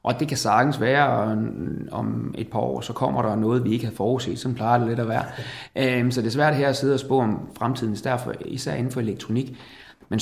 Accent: native